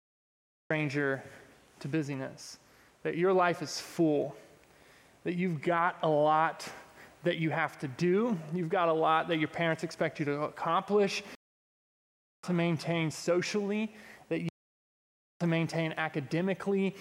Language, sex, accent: English, male, American